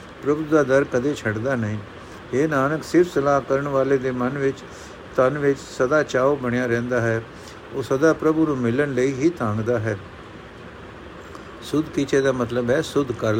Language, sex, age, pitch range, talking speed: Punjabi, male, 60-79, 120-145 Hz, 165 wpm